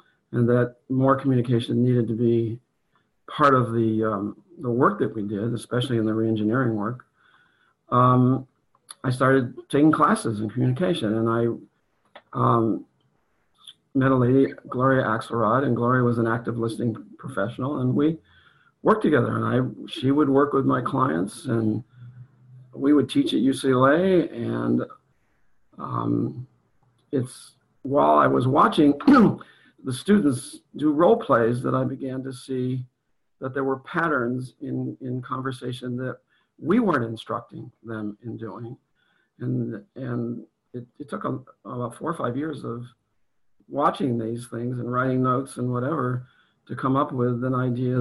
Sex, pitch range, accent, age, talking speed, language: male, 115-135 Hz, American, 50-69, 145 wpm, English